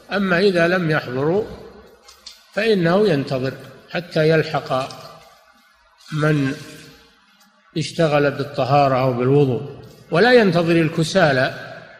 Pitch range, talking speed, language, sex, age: 145-185 Hz, 80 wpm, Arabic, male, 50-69